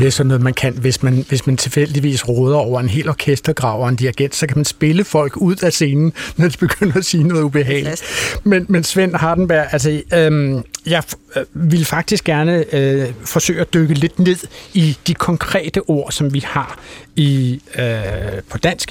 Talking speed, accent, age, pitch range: 200 wpm, native, 60-79, 130-160 Hz